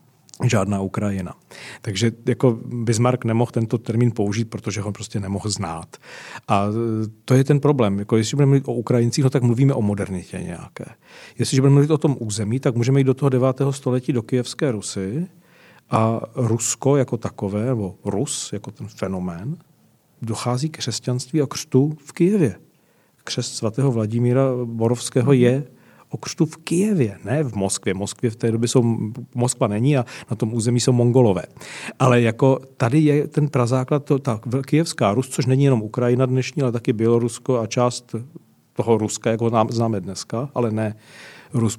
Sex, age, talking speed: male, 40-59, 165 wpm